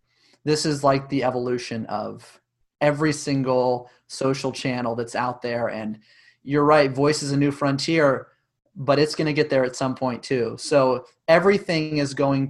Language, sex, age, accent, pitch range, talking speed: English, male, 30-49, American, 130-165 Hz, 170 wpm